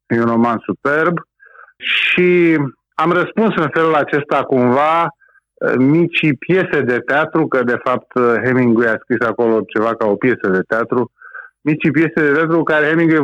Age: 30-49